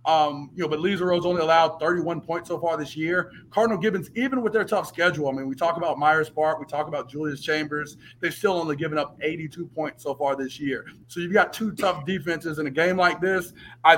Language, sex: English, male